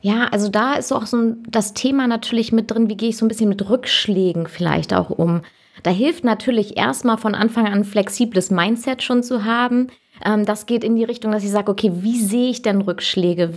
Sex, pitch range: female, 195-230 Hz